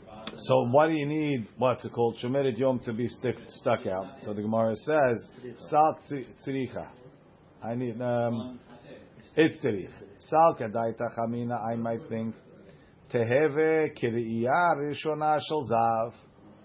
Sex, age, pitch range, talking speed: male, 50-69, 120-155 Hz, 130 wpm